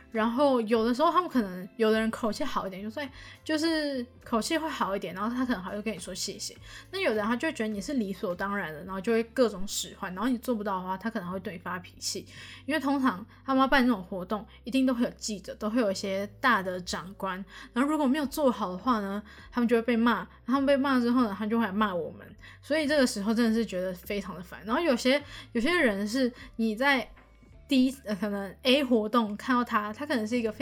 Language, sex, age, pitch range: Chinese, female, 10-29, 205-260 Hz